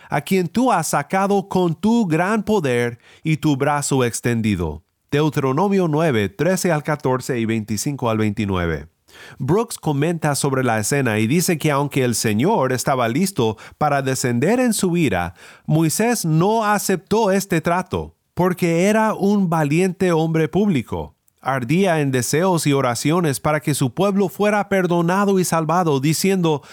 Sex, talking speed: male, 145 wpm